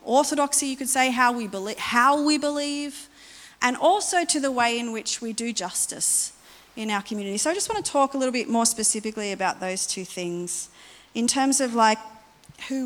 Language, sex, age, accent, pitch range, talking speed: English, female, 40-59, Australian, 195-270 Hz, 200 wpm